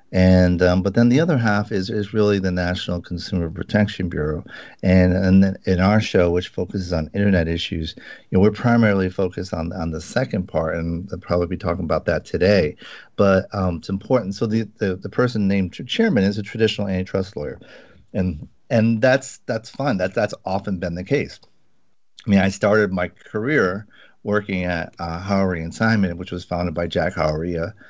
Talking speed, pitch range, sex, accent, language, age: 195 wpm, 90-105 Hz, male, American, English, 40-59